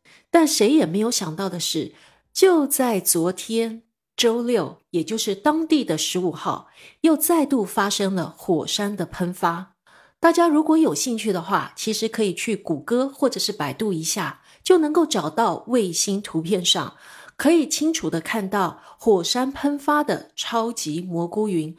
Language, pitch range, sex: Chinese, 185-270 Hz, female